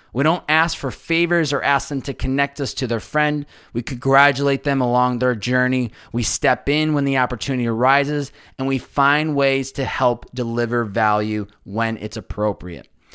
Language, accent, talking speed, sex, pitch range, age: English, American, 175 wpm, male, 115-145 Hz, 20-39